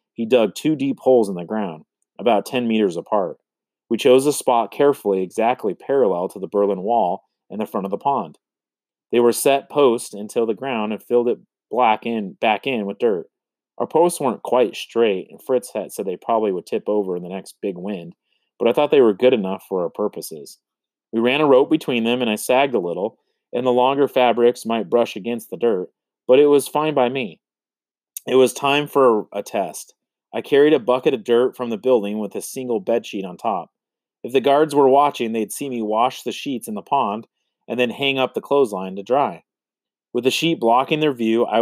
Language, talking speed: English, 215 wpm